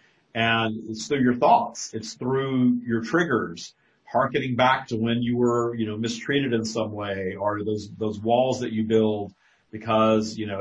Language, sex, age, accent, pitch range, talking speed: English, male, 40-59, American, 110-125 Hz, 175 wpm